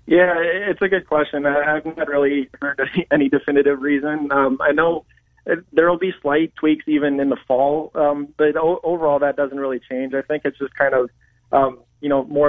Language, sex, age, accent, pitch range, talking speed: English, male, 20-39, American, 130-145 Hz, 210 wpm